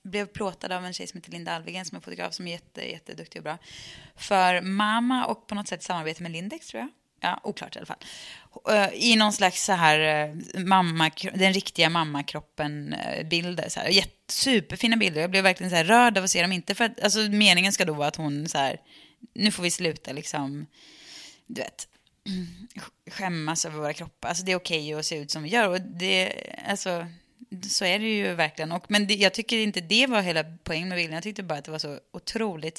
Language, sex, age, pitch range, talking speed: English, female, 20-39, 165-210 Hz, 220 wpm